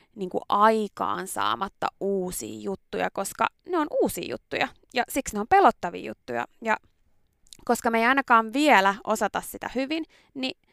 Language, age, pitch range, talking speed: Finnish, 20-39, 195-290 Hz, 145 wpm